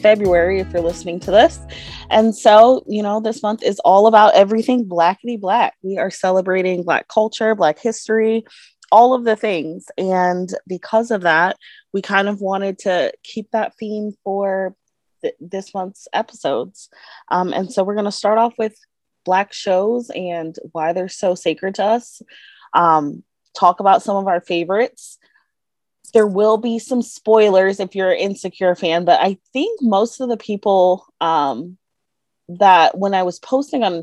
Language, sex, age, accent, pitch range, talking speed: English, female, 20-39, American, 175-220 Hz, 165 wpm